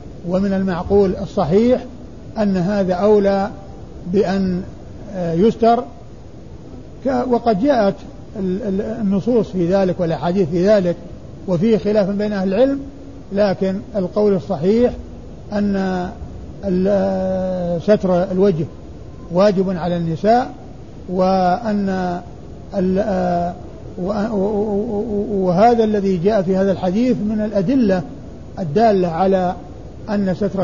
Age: 50-69